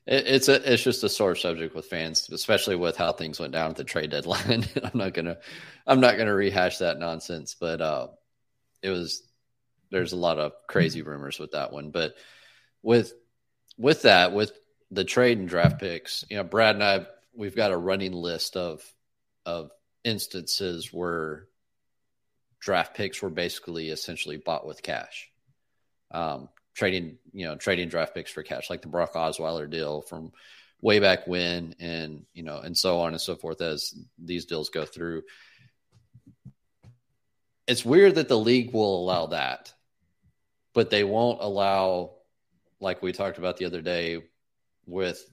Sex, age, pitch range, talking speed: male, 30-49, 85-115 Hz, 165 wpm